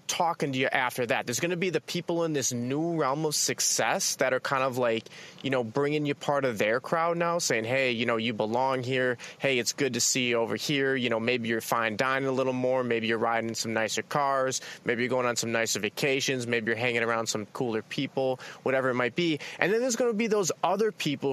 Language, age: English, 20-39